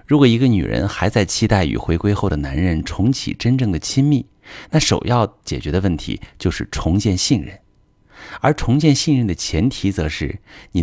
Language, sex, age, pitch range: Chinese, male, 50-69, 85-120 Hz